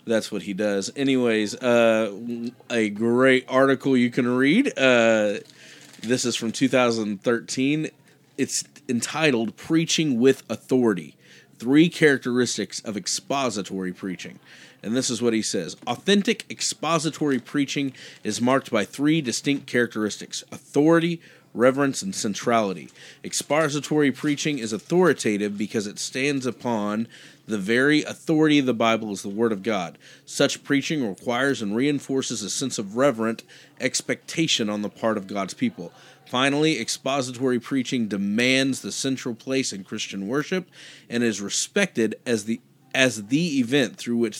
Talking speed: 135 wpm